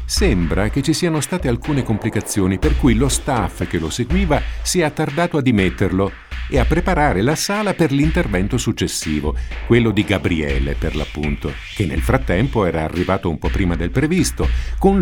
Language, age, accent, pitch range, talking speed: Italian, 50-69, native, 85-130 Hz, 170 wpm